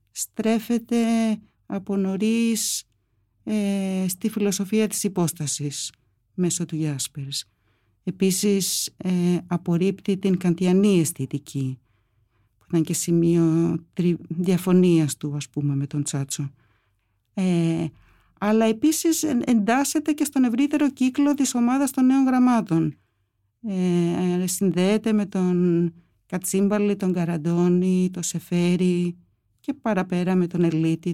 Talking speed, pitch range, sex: 110 wpm, 150-215 Hz, female